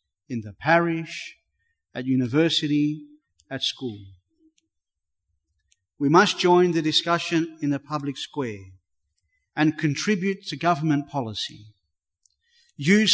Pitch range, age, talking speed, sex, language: 125-170 Hz, 40-59, 100 wpm, male, English